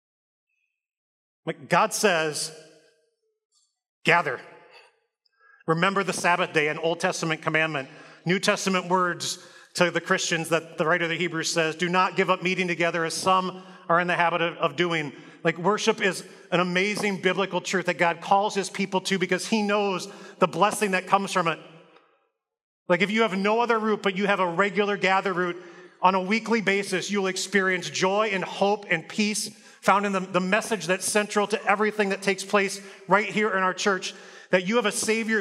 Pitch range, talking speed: 175-220 Hz, 185 wpm